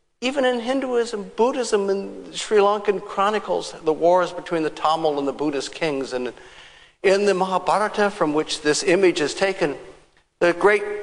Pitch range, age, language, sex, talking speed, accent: 145-220 Hz, 60-79, English, male, 160 wpm, American